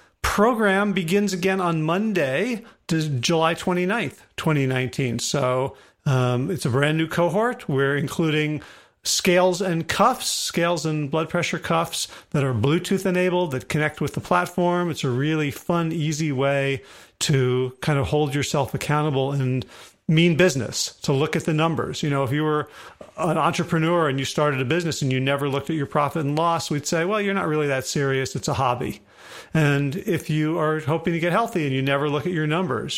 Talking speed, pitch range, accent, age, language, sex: 185 wpm, 140-175 Hz, American, 40-59, English, male